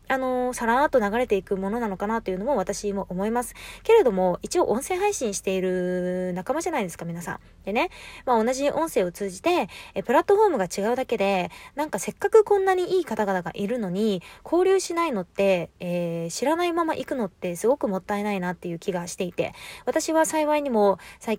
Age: 20-39